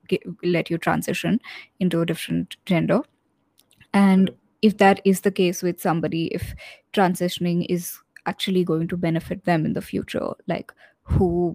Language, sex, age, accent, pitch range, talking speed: English, female, 20-39, Indian, 175-195 Hz, 145 wpm